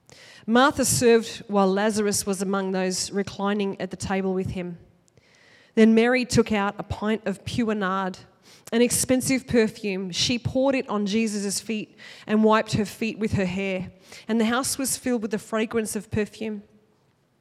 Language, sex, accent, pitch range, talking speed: English, female, Australian, 200-240 Hz, 165 wpm